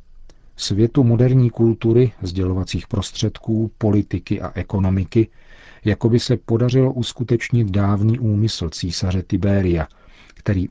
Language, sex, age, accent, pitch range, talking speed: Czech, male, 50-69, native, 95-110 Hz, 100 wpm